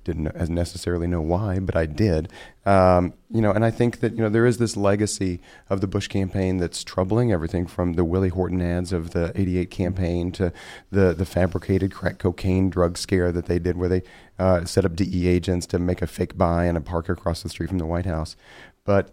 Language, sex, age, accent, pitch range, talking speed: English, male, 30-49, American, 85-100 Hz, 220 wpm